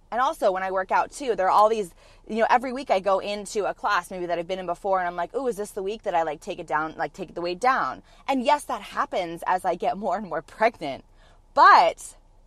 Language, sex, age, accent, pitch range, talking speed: English, female, 20-39, American, 165-255 Hz, 275 wpm